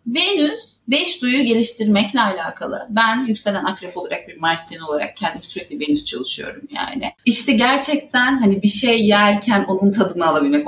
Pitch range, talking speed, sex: 185-260 Hz, 145 wpm, female